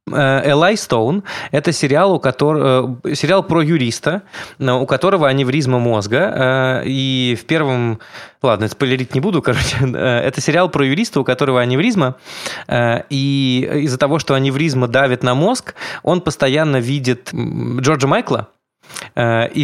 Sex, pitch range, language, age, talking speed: male, 115-145 Hz, Russian, 20-39, 120 wpm